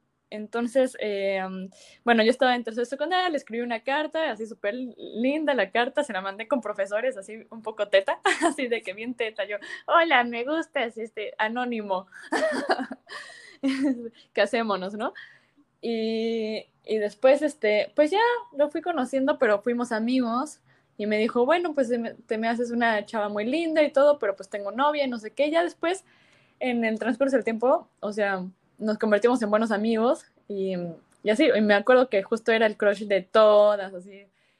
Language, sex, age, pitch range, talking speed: Spanish, female, 10-29, 210-275 Hz, 175 wpm